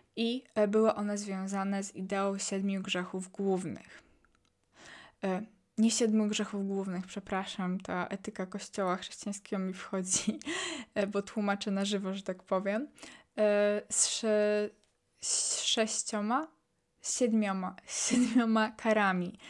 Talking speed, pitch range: 115 wpm, 195-220 Hz